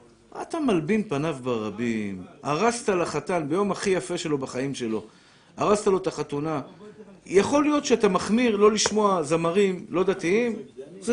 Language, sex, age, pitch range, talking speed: Hebrew, male, 50-69, 160-225 Hz, 145 wpm